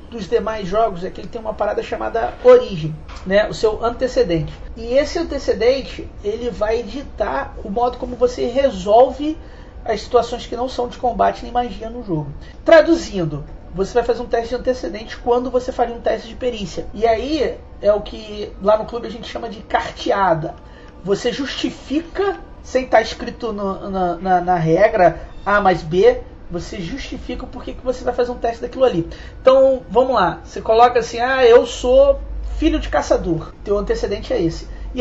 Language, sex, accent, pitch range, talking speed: Portuguese, male, Brazilian, 220-275 Hz, 180 wpm